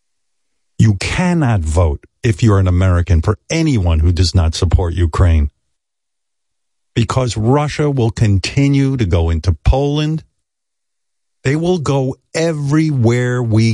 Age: 50-69